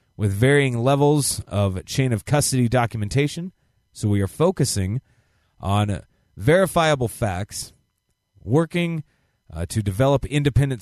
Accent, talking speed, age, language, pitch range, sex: American, 110 wpm, 30-49, English, 100-140 Hz, male